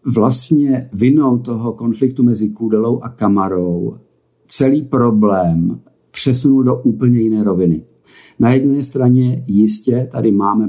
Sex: male